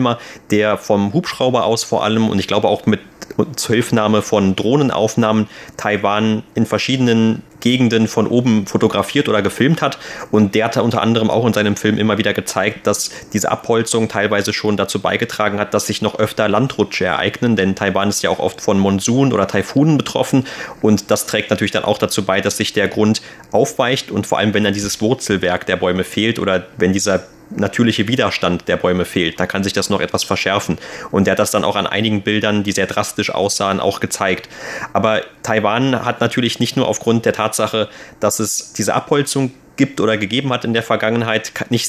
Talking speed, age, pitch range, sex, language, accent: 195 wpm, 30-49, 100-115 Hz, male, German, German